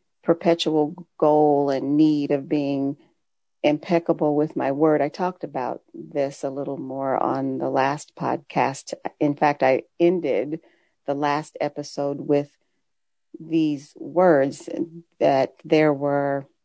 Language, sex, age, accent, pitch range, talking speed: English, female, 40-59, American, 145-170 Hz, 125 wpm